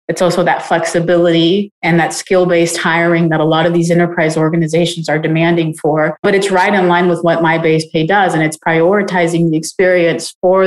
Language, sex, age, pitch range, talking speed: English, female, 30-49, 170-190 Hz, 190 wpm